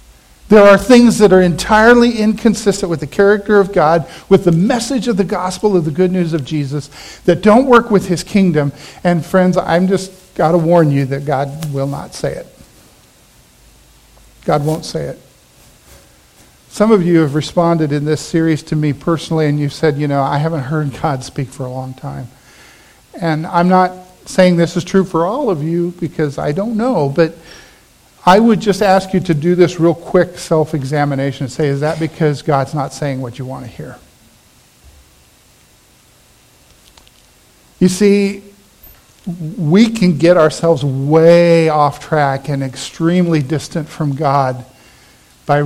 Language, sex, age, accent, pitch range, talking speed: English, male, 50-69, American, 140-185 Hz, 170 wpm